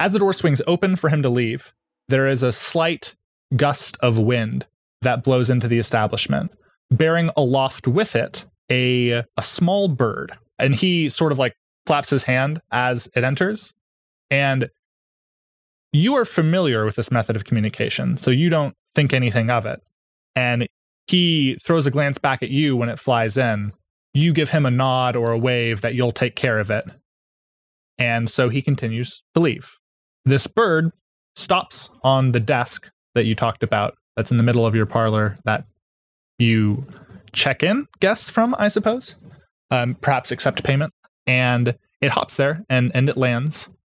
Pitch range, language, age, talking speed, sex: 120-150 Hz, English, 20-39, 170 wpm, male